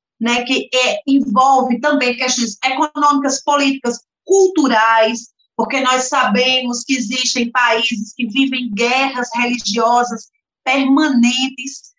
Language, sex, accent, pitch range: Portuguese, female, Brazilian, 235-305 Hz